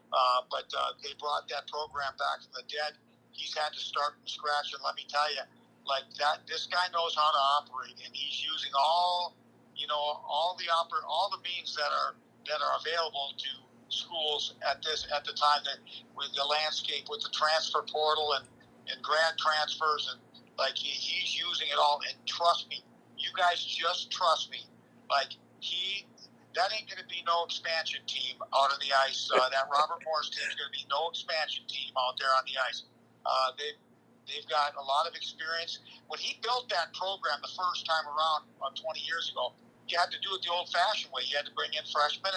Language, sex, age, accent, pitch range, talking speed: English, male, 50-69, American, 140-170 Hz, 205 wpm